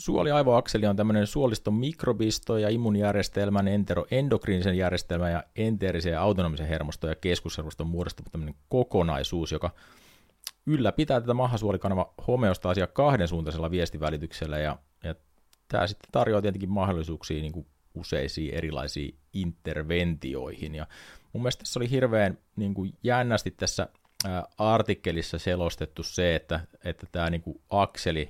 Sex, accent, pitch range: male, native, 80-105 Hz